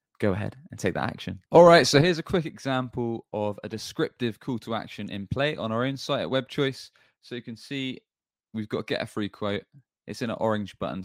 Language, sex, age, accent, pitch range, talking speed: English, male, 20-39, British, 95-125 Hz, 235 wpm